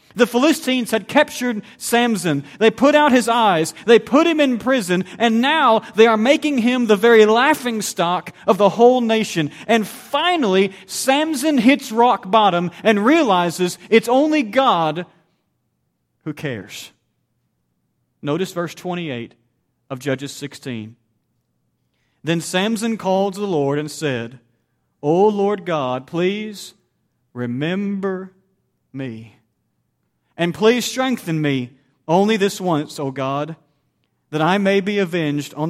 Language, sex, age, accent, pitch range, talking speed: English, male, 40-59, American, 145-215 Hz, 130 wpm